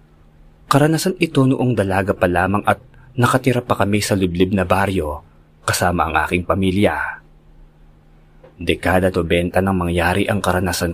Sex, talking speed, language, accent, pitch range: male, 130 wpm, Filipino, native, 75-105 Hz